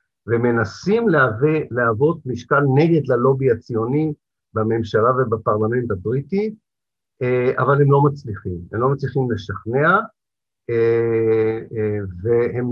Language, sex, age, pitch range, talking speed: Hebrew, male, 50-69, 115-165 Hz, 90 wpm